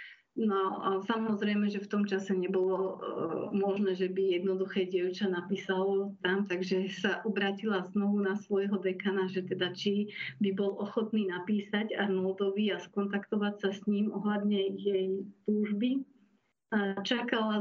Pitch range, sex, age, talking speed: 195-220 Hz, female, 30-49, 140 wpm